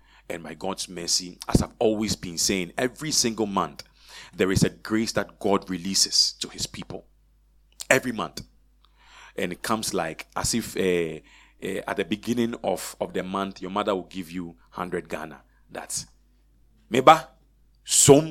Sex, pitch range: male, 85-130 Hz